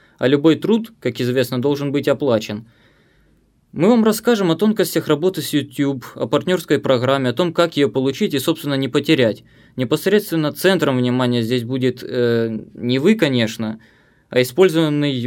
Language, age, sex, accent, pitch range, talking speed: Ukrainian, 20-39, male, native, 125-155 Hz, 155 wpm